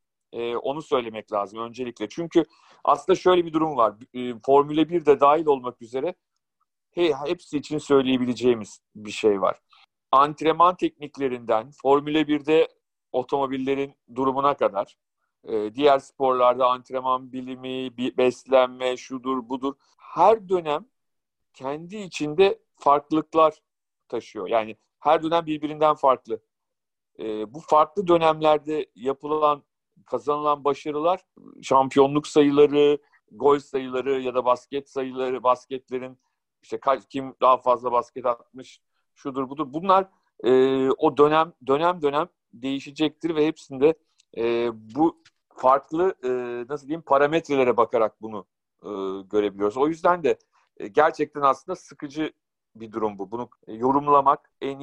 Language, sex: Turkish, male